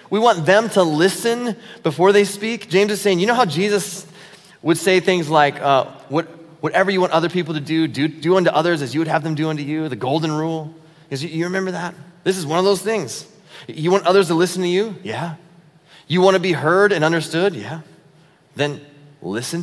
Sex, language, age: male, English, 30-49